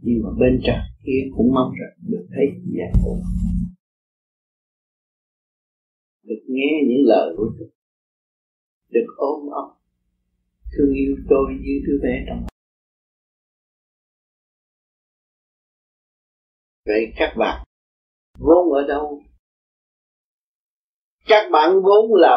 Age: 50-69